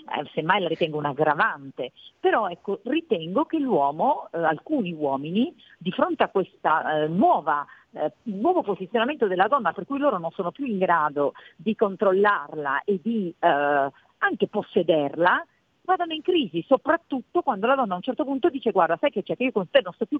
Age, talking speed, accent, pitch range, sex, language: 50-69, 185 wpm, native, 175-255 Hz, female, Italian